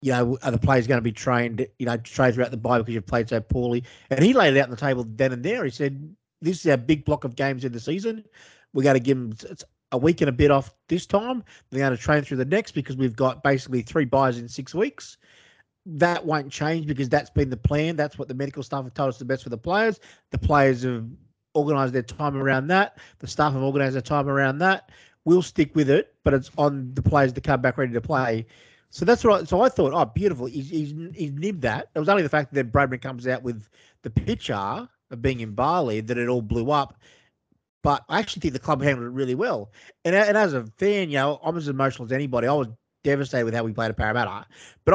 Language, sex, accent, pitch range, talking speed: English, male, Australian, 130-155 Hz, 255 wpm